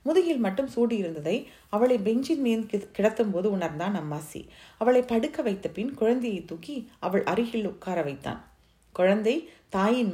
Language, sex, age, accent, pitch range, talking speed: Tamil, female, 30-49, native, 170-210 Hz, 130 wpm